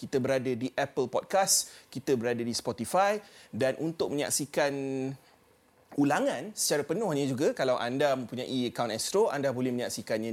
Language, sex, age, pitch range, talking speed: Malay, male, 30-49, 130-195 Hz, 140 wpm